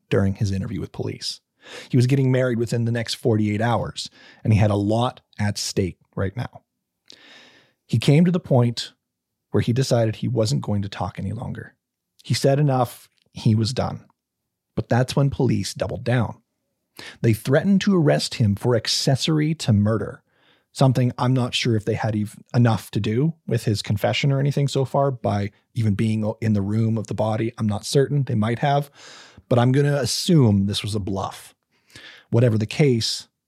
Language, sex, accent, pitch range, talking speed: English, male, American, 105-135 Hz, 185 wpm